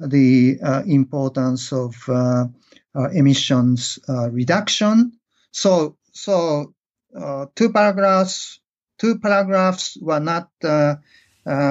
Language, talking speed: English, 100 wpm